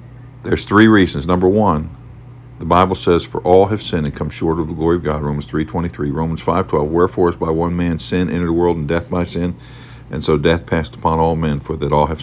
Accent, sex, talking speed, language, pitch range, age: American, male, 245 wpm, English, 80-125 Hz, 50-69